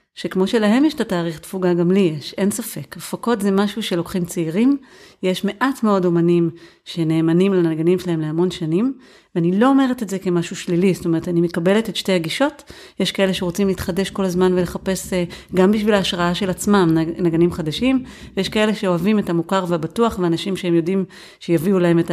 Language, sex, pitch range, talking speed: Hebrew, female, 170-200 Hz, 175 wpm